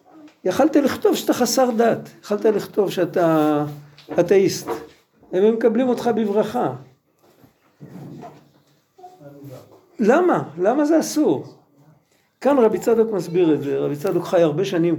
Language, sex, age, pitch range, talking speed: Hebrew, male, 50-69, 165-245 Hz, 110 wpm